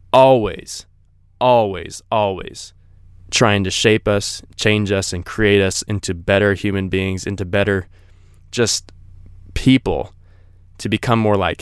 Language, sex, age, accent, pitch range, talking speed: English, male, 20-39, American, 90-115 Hz, 125 wpm